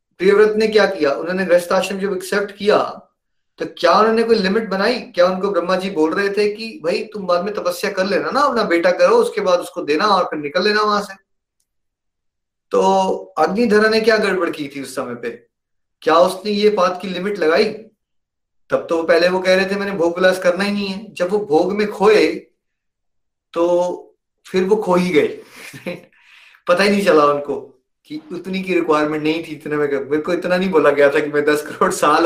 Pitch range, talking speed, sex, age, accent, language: 145-200 Hz, 125 wpm, male, 30-49, native, Hindi